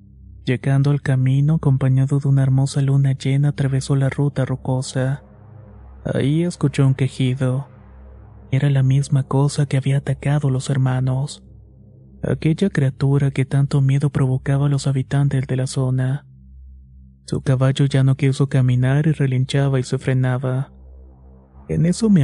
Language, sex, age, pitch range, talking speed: Spanish, male, 30-49, 130-140 Hz, 145 wpm